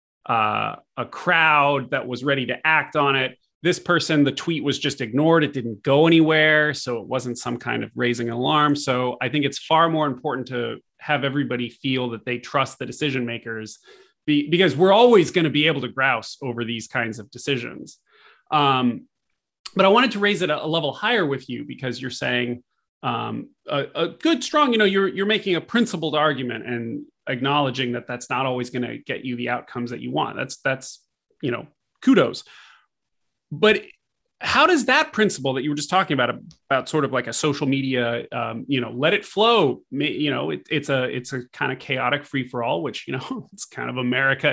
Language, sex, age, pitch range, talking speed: English, male, 30-49, 125-165 Hz, 205 wpm